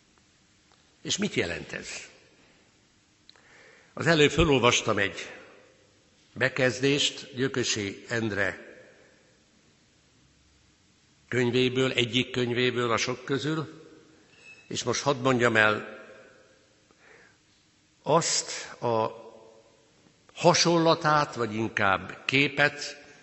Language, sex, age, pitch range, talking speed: Hungarian, male, 60-79, 105-130 Hz, 70 wpm